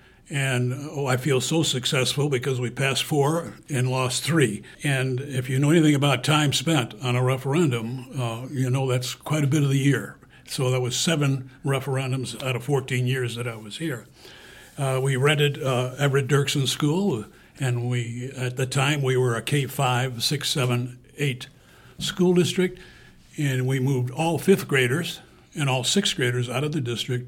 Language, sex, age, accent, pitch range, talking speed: English, male, 60-79, American, 125-145 Hz, 180 wpm